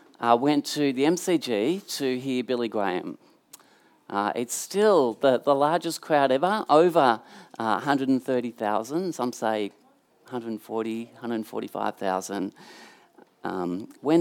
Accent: Australian